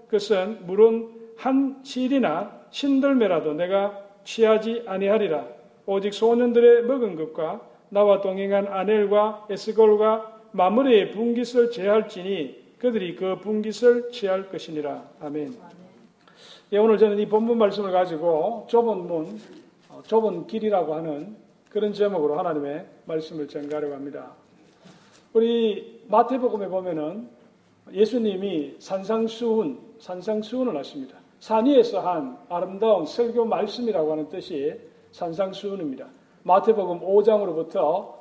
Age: 40-59